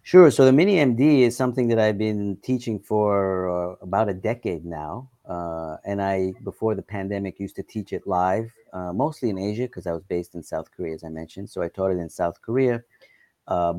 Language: English